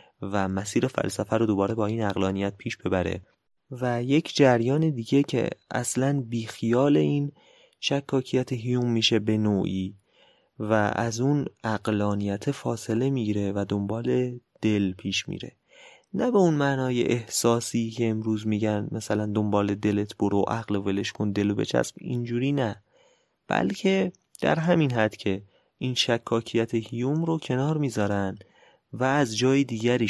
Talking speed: 140 wpm